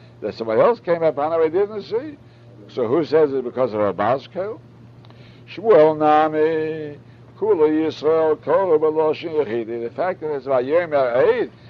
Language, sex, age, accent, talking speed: English, male, 60-79, American, 110 wpm